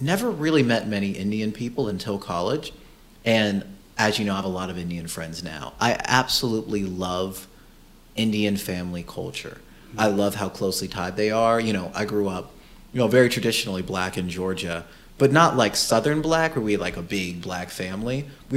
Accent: American